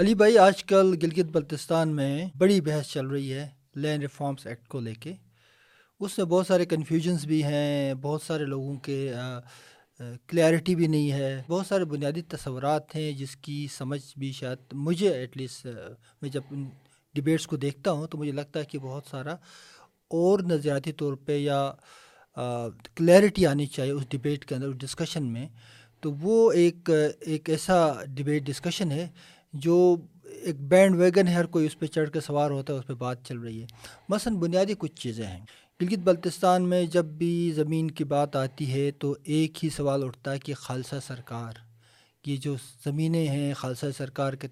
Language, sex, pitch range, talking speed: Urdu, male, 135-165 Hz, 180 wpm